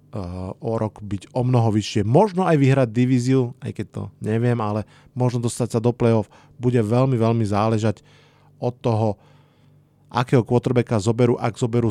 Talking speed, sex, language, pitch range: 155 wpm, male, Slovak, 110-135 Hz